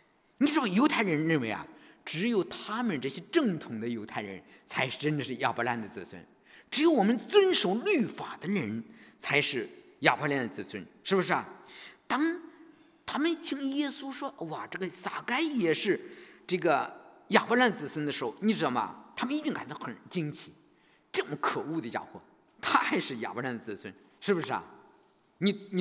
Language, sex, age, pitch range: English, male, 50-69, 180-290 Hz